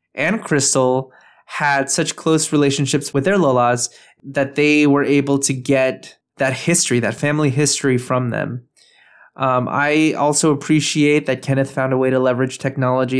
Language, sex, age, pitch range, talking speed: English, male, 20-39, 130-145 Hz, 155 wpm